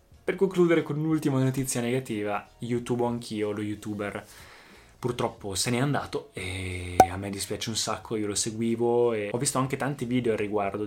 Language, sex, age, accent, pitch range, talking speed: Italian, male, 20-39, native, 105-125 Hz, 170 wpm